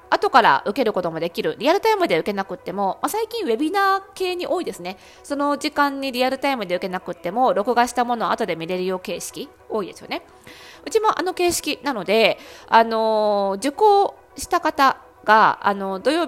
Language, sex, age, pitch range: Japanese, female, 20-39, 195-290 Hz